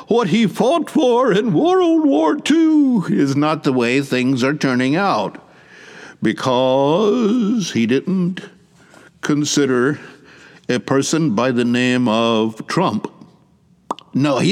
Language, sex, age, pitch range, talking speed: English, male, 60-79, 145-205 Hz, 120 wpm